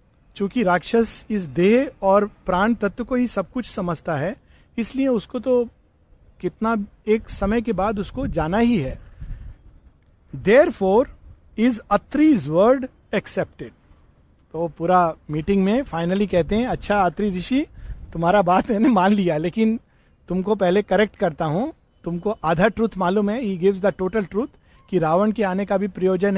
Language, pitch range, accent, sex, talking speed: Hindi, 170-225 Hz, native, male, 155 wpm